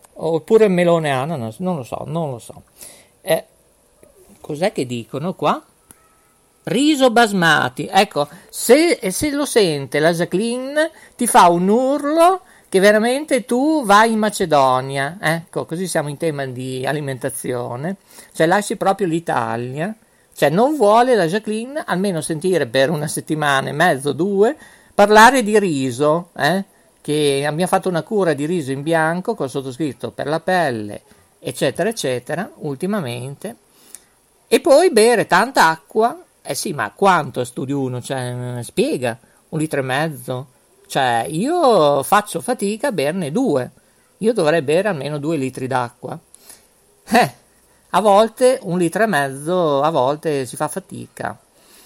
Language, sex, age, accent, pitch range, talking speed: Italian, male, 50-69, native, 140-210 Hz, 140 wpm